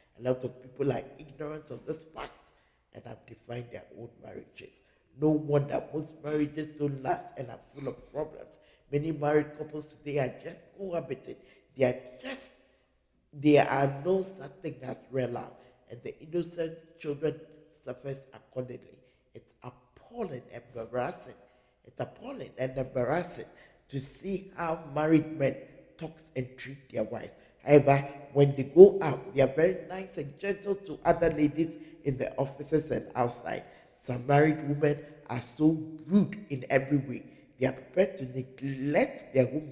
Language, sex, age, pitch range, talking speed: English, male, 50-69, 130-160 Hz, 155 wpm